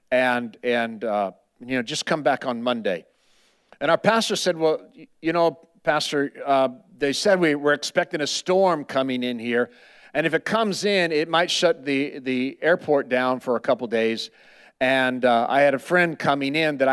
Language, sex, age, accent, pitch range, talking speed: English, male, 50-69, American, 125-150 Hz, 190 wpm